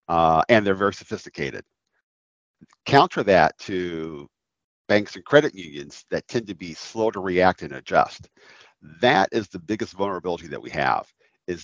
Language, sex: English, male